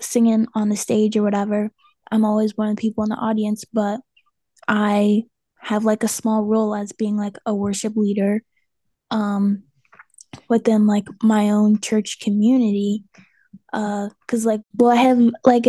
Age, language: 10-29, English